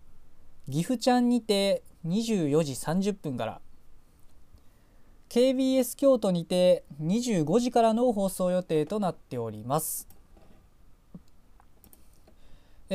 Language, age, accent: Japanese, 20-39, native